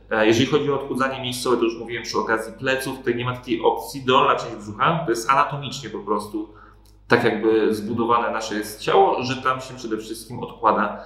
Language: Polish